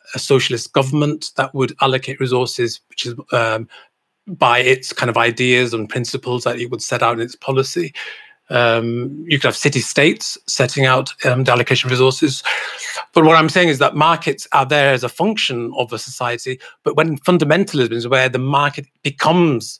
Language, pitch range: English, 120-140 Hz